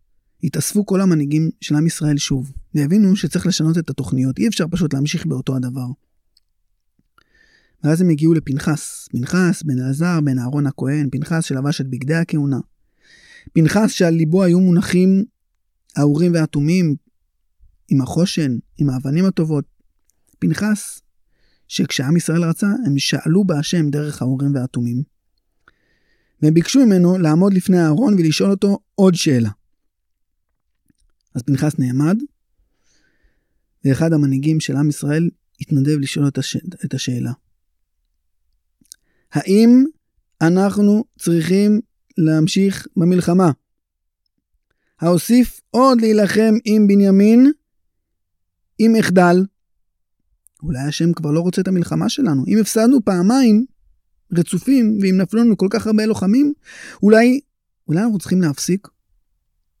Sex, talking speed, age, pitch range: male, 115 wpm, 30-49, 135-190 Hz